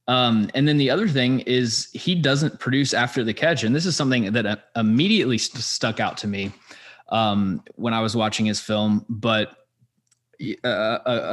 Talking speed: 175 wpm